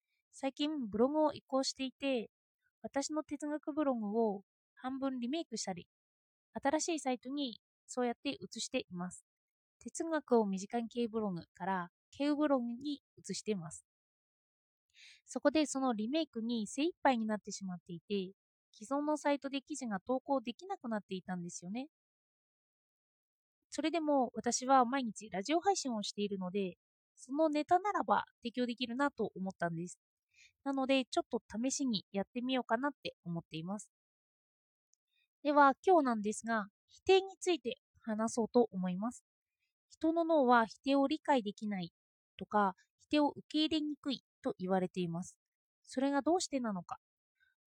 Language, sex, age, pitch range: Japanese, female, 20-39, 205-290 Hz